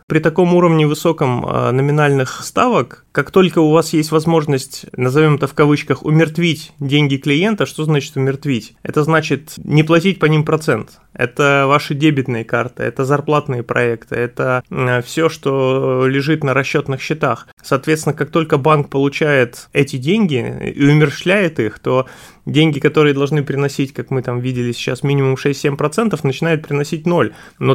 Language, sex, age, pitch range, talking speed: Russian, male, 20-39, 130-155 Hz, 150 wpm